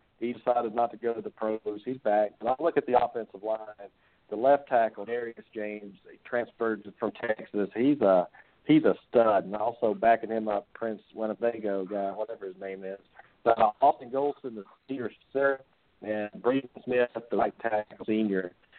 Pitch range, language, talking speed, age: 100-120 Hz, English, 180 wpm, 50-69